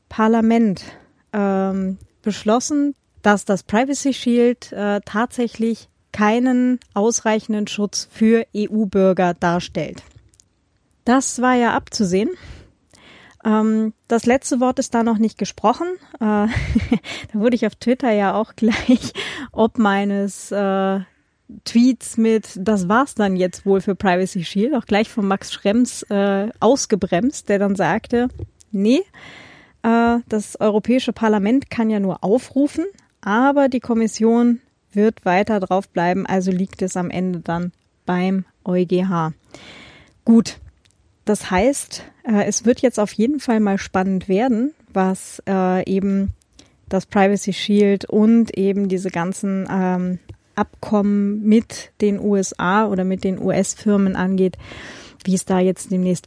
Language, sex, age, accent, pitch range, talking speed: German, female, 30-49, German, 190-230 Hz, 125 wpm